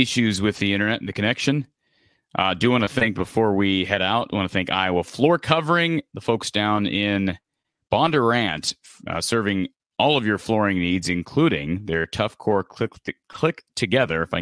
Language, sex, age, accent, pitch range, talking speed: English, male, 30-49, American, 85-115 Hz, 185 wpm